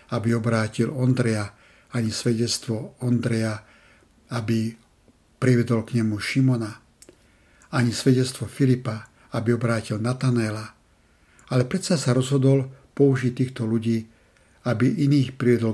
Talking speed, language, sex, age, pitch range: 105 wpm, Slovak, male, 60-79, 110-130 Hz